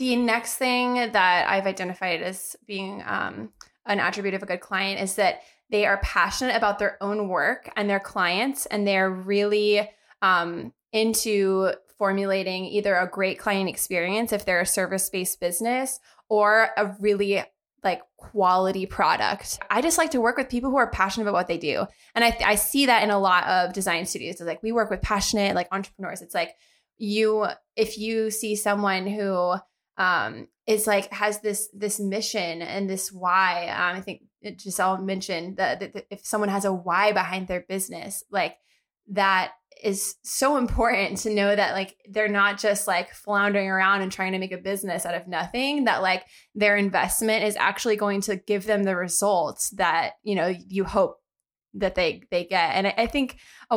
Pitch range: 190-215 Hz